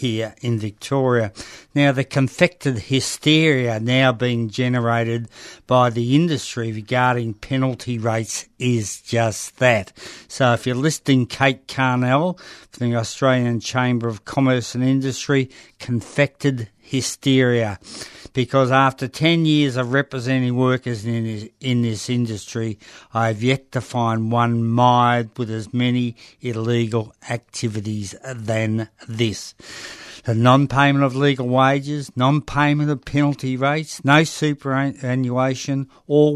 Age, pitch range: 60-79, 115-135 Hz